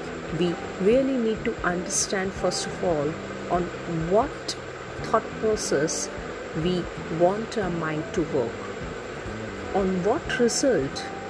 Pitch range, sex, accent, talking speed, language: 165-200 Hz, female, native, 110 wpm, Hindi